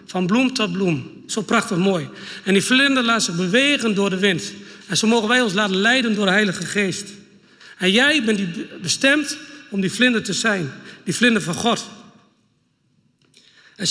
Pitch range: 200-255 Hz